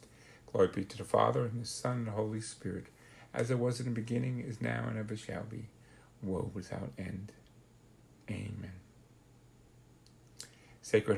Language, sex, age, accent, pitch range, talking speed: English, male, 50-69, American, 105-120 Hz, 155 wpm